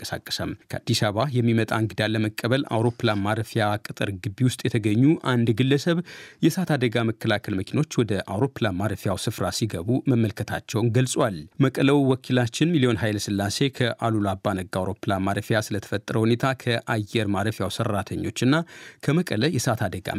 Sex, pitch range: male, 110-130 Hz